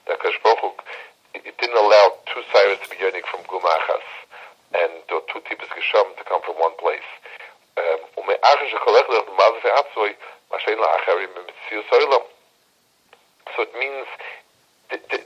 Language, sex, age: English, male, 60-79